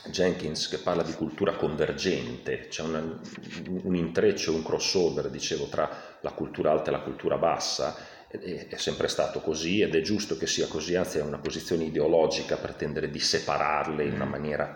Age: 40-59